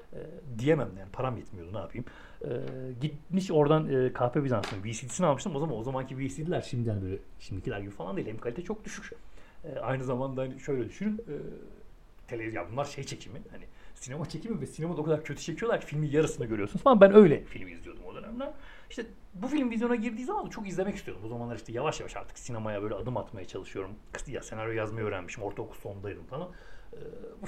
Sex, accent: male, native